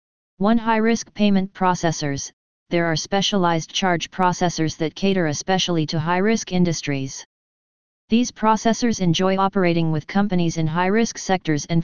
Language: English